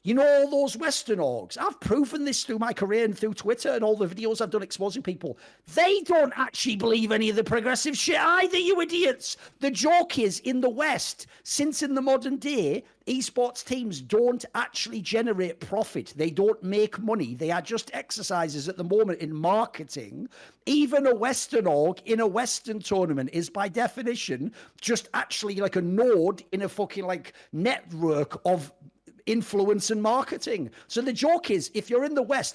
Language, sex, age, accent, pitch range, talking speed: English, male, 50-69, British, 195-260 Hz, 185 wpm